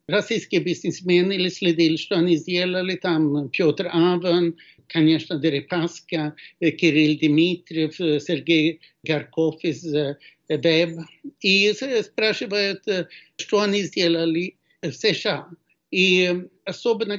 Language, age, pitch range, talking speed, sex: Russian, 60-79, 160-190 Hz, 95 wpm, male